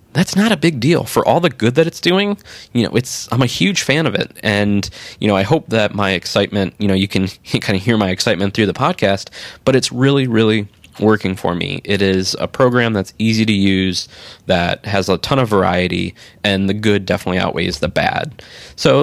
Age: 20-39